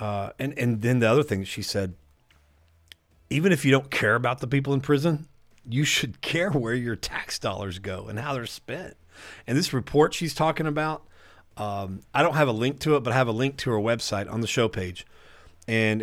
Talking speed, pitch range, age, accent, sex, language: 215 wpm, 100-135 Hz, 40-59, American, male, English